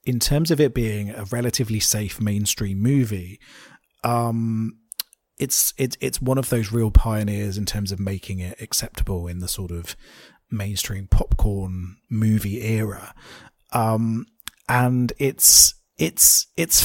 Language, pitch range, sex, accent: English, 105-125 Hz, male, British